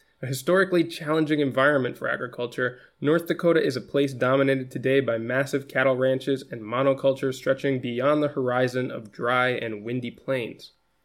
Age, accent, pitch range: 20-39, American, 130-165 Hz